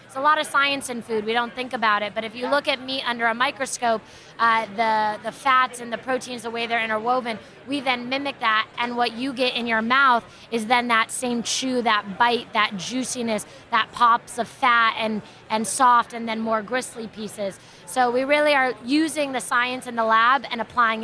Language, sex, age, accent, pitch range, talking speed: English, female, 20-39, American, 225-255 Hz, 215 wpm